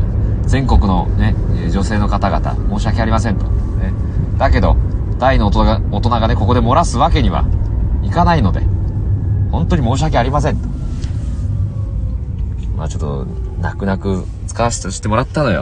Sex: male